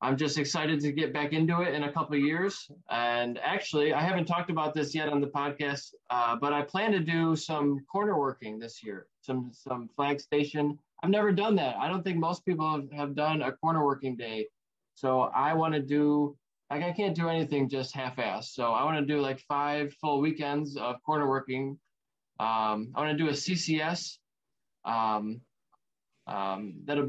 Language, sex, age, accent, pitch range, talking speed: English, male, 20-39, American, 130-155 Hz, 195 wpm